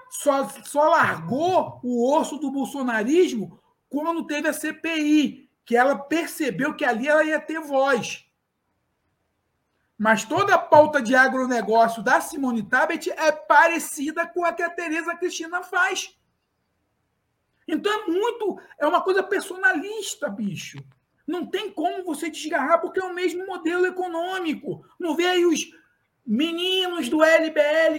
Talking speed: 135 wpm